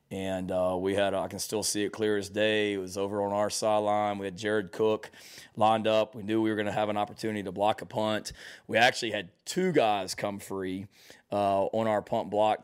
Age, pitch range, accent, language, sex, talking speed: 30-49, 100-110 Hz, American, English, male, 235 wpm